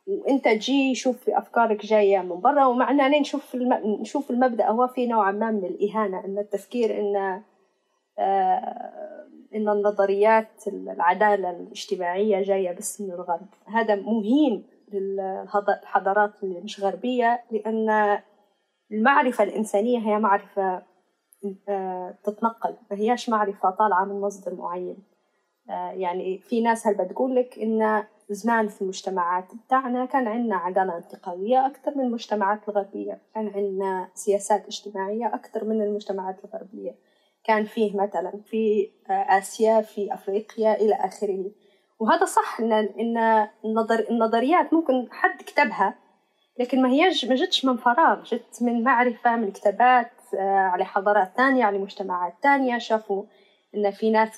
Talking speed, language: 125 wpm, Arabic